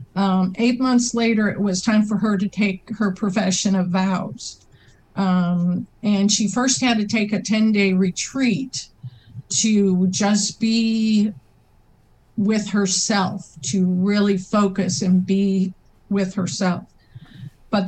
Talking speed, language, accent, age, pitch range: 130 wpm, English, American, 50-69, 180-210 Hz